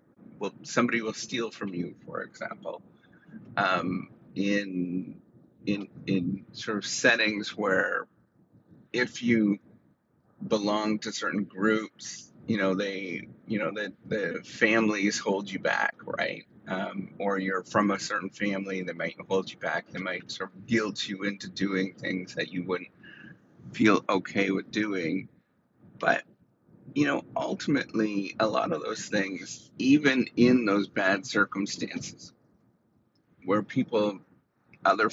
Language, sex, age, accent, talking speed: English, male, 30-49, American, 135 wpm